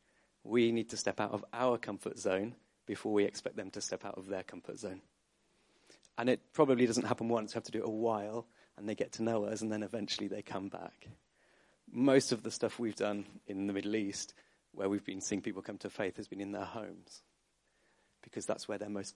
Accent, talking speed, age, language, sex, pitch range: British, 230 wpm, 30-49, English, male, 105-130 Hz